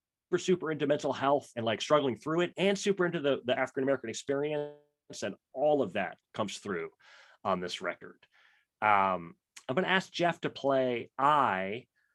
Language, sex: English, male